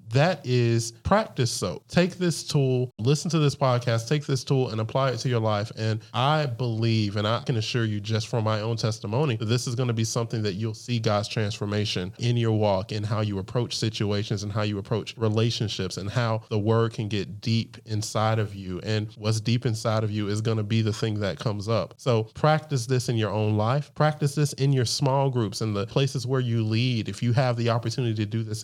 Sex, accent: male, American